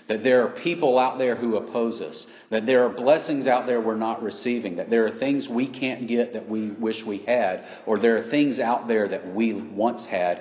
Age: 40-59